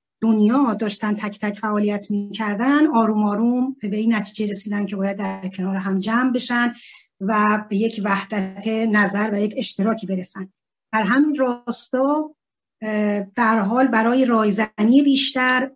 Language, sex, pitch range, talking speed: Persian, female, 210-245 Hz, 135 wpm